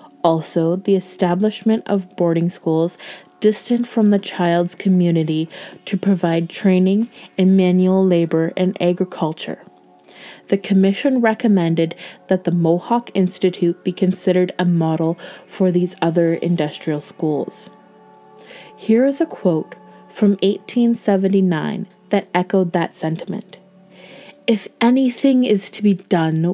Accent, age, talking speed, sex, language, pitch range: American, 30-49, 115 wpm, female, English, 170-205 Hz